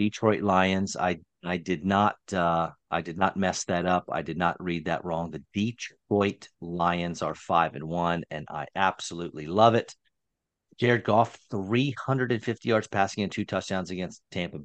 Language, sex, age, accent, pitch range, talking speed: English, male, 40-59, American, 85-115 Hz, 180 wpm